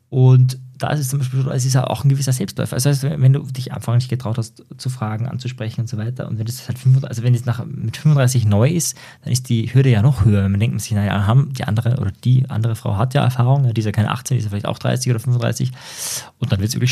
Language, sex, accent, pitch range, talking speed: German, male, German, 115-135 Hz, 290 wpm